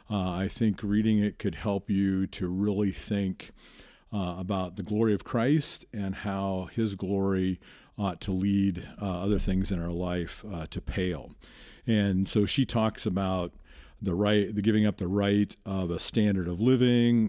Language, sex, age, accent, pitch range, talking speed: English, male, 50-69, American, 95-110 Hz, 175 wpm